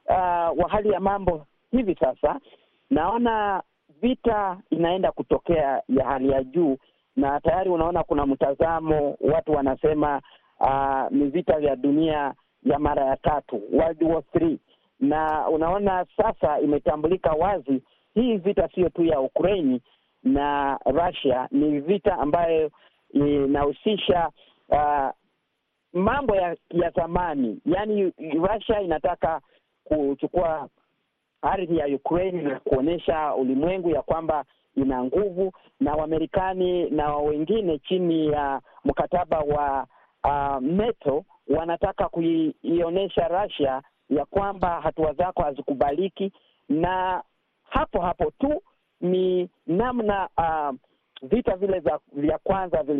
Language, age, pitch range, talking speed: Swahili, 40-59, 145-195 Hz, 115 wpm